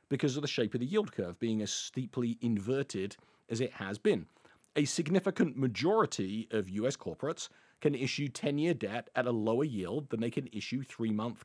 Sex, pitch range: male, 110-150 Hz